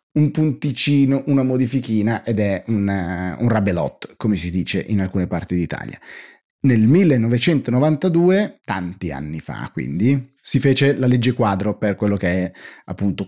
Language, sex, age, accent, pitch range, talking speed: Italian, male, 30-49, native, 100-135 Hz, 140 wpm